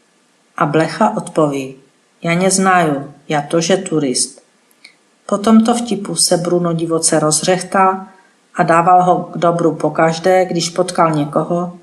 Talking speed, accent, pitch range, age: 125 wpm, native, 165-195 Hz, 40-59